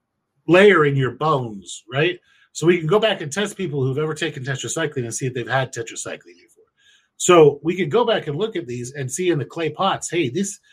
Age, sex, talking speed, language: 40-59, male, 230 wpm, English